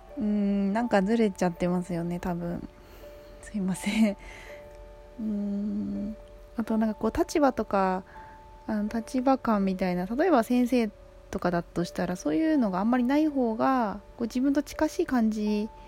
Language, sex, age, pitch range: Japanese, female, 20-39, 185-260 Hz